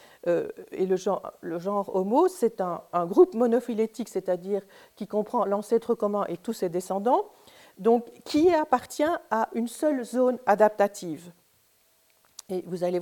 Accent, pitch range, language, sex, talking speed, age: French, 200-275 Hz, French, female, 145 wpm, 50-69